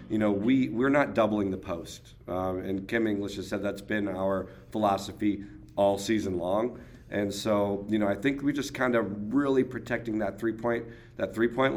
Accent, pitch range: American, 100-115 Hz